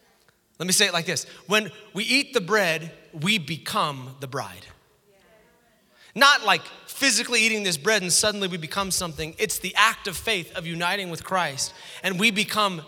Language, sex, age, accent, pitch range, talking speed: English, male, 30-49, American, 150-215 Hz, 175 wpm